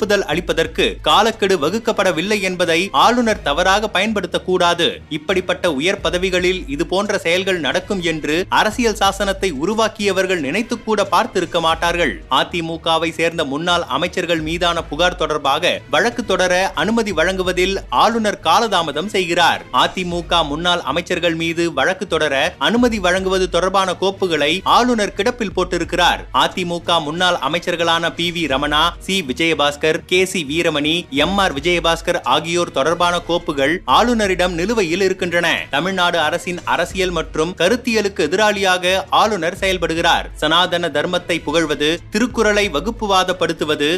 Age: 30-49